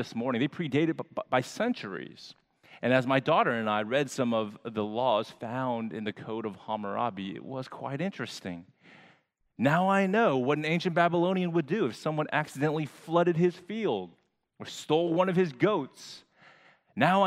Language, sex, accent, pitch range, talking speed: English, male, American, 105-160 Hz, 175 wpm